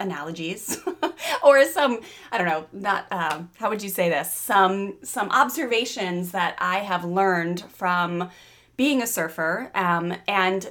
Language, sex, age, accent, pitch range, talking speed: English, female, 20-39, American, 180-245 Hz, 145 wpm